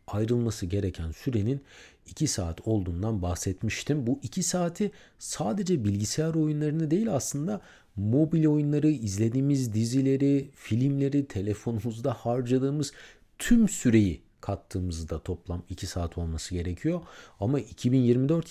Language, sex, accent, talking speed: Turkish, male, native, 105 wpm